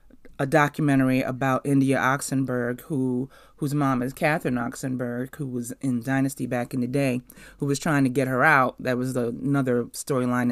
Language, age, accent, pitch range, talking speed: English, 30-49, American, 130-195 Hz, 175 wpm